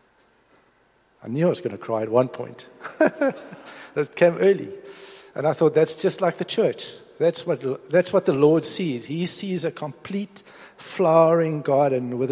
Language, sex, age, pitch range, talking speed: English, male, 50-69, 125-160 Hz, 170 wpm